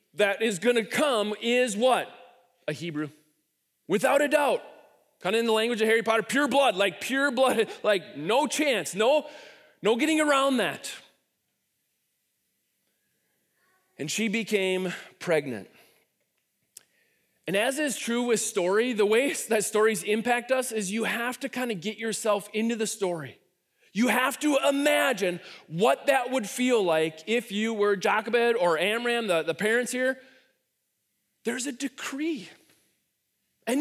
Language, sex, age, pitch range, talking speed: English, male, 30-49, 205-265 Hz, 145 wpm